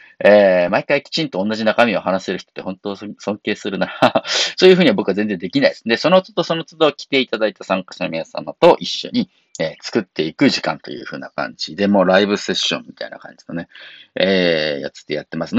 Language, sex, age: Japanese, male, 40-59